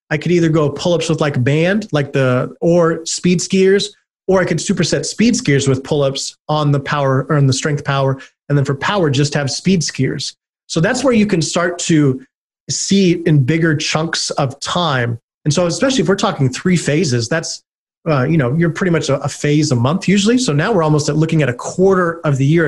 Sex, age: male, 30-49